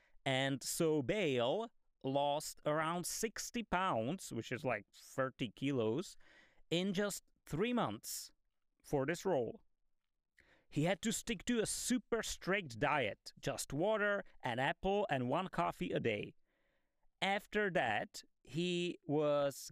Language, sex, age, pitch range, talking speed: English, male, 30-49, 130-185 Hz, 125 wpm